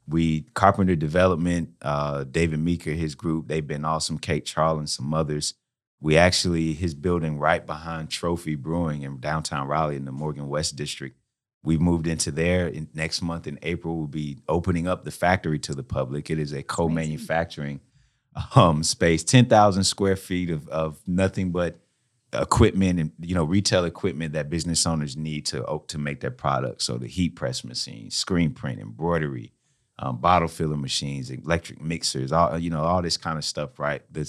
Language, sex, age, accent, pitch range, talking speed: English, male, 30-49, American, 75-85 Hz, 175 wpm